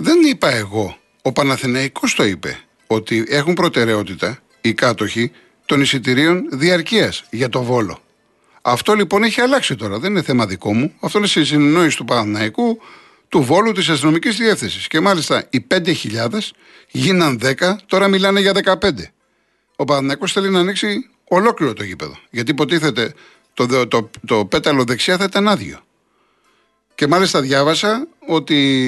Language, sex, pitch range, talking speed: Greek, male, 125-185 Hz, 150 wpm